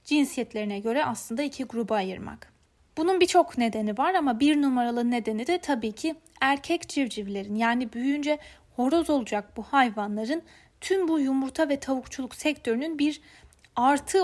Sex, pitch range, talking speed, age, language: female, 220-280 Hz, 140 wpm, 30-49, German